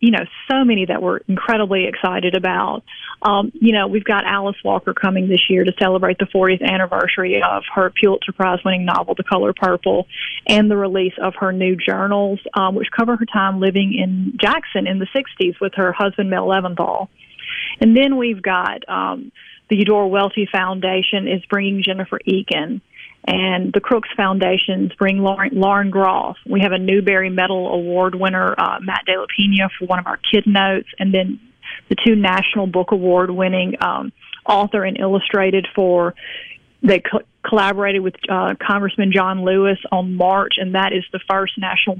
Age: 30-49